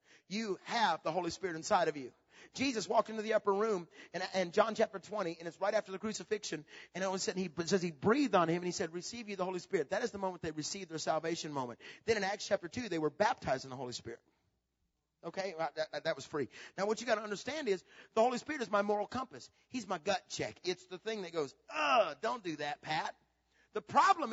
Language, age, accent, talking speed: English, 40-59, American, 250 wpm